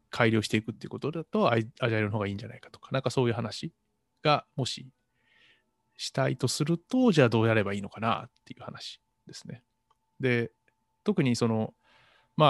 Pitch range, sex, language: 110-150 Hz, male, Japanese